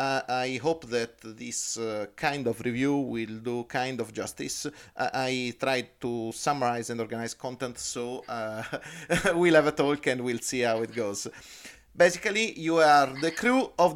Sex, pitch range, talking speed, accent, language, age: male, 125-165 Hz, 170 wpm, Italian, English, 40-59